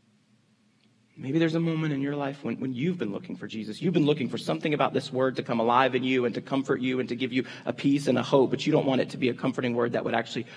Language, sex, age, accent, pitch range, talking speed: English, male, 30-49, American, 110-145 Hz, 300 wpm